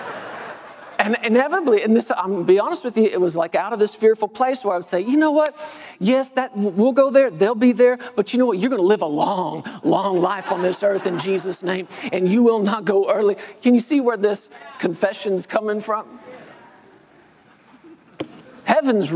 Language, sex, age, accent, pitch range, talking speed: English, male, 40-59, American, 170-235 Hz, 205 wpm